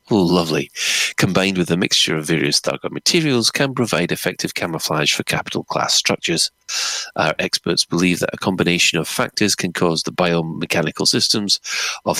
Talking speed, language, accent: 155 wpm, English, British